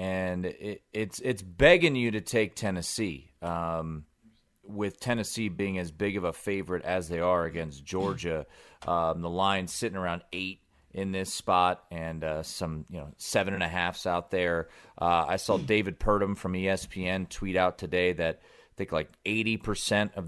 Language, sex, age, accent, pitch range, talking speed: English, male, 30-49, American, 90-120 Hz, 180 wpm